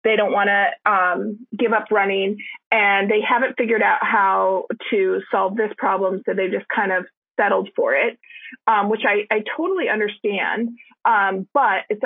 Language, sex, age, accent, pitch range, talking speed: English, female, 30-49, American, 205-265 Hz, 175 wpm